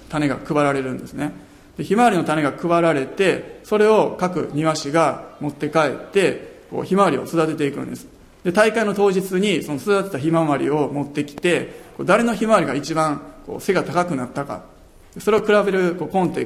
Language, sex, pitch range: Japanese, male, 145-185 Hz